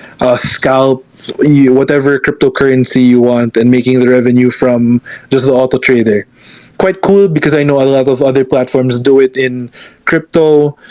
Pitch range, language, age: 125-145 Hz, English, 20-39